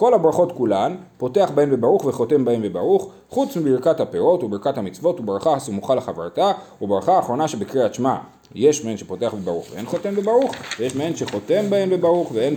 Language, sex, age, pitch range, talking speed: Hebrew, male, 30-49, 130-210 Hz, 160 wpm